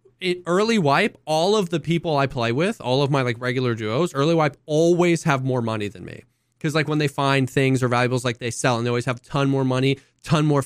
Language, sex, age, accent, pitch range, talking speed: English, male, 20-39, American, 125-155 Hz, 255 wpm